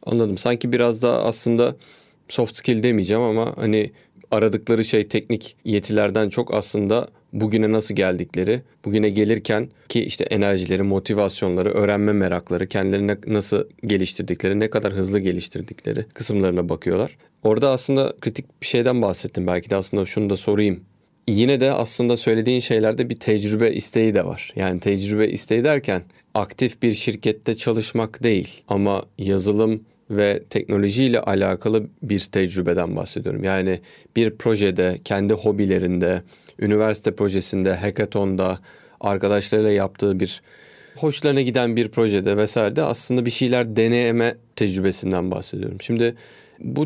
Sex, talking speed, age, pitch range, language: male, 130 wpm, 30-49, 100-115 Hz, Turkish